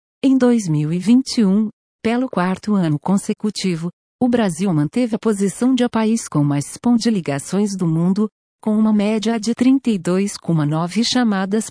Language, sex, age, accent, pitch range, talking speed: Portuguese, female, 50-69, Brazilian, 160-220 Hz, 140 wpm